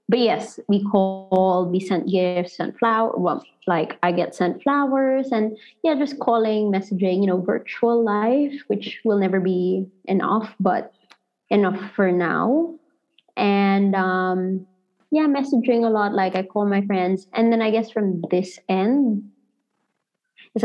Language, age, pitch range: Filipino, 20-39, 180-215 Hz